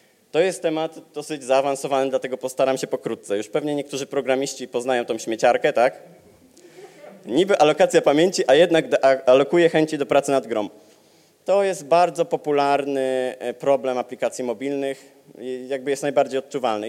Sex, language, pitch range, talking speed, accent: male, Polish, 130-165 Hz, 140 wpm, native